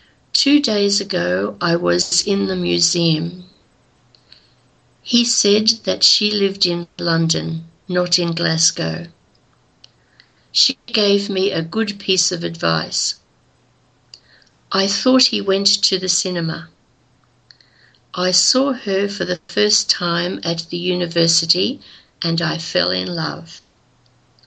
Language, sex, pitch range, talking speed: Greek, female, 165-205 Hz, 120 wpm